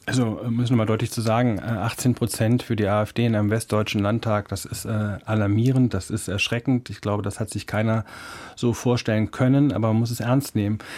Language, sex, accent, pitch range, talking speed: German, male, German, 110-130 Hz, 210 wpm